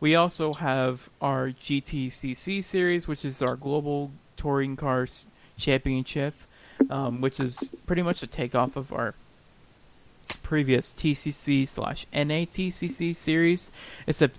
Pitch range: 130-155 Hz